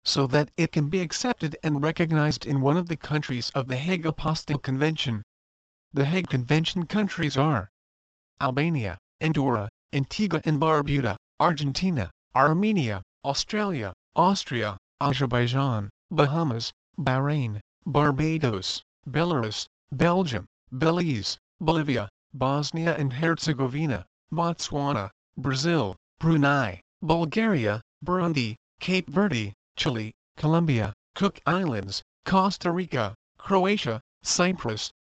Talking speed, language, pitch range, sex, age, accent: 100 wpm, English, 115-165 Hz, male, 40-59, American